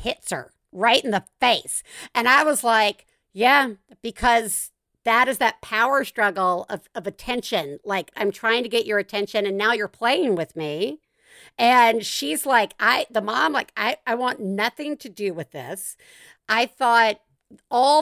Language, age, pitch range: English, 50-69, 200-250 Hz